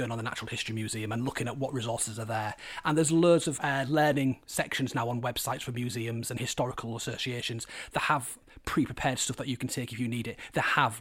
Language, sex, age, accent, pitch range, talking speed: English, male, 30-49, British, 120-150 Hz, 225 wpm